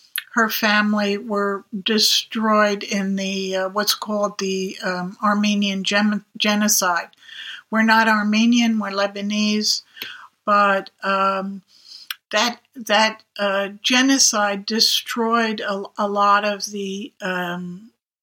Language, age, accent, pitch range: English, 60-79, American, 205-235 Hz